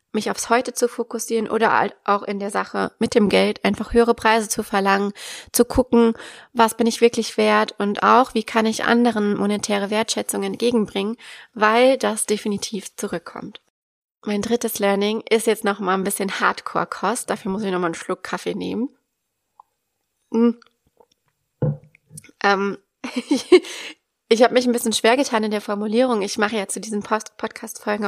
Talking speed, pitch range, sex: 155 wpm, 205-235 Hz, female